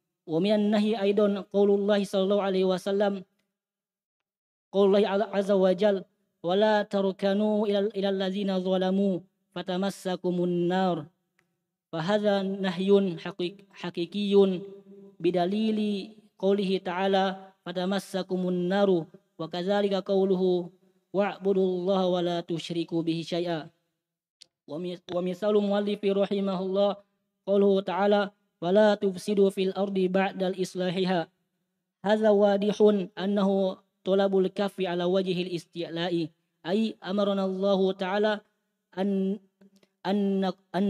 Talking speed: 95 wpm